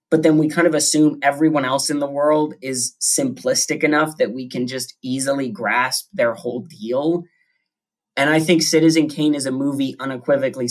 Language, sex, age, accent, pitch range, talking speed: English, male, 20-39, American, 120-155 Hz, 180 wpm